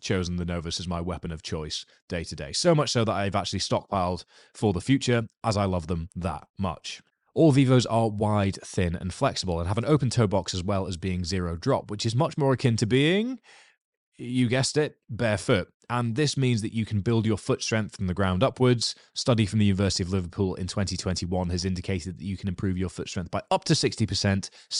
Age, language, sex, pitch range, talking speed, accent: 20-39, English, male, 90-120 Hz, 220 wpm, British